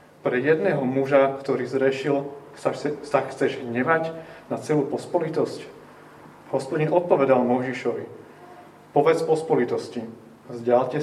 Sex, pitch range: male, 130-155 Hz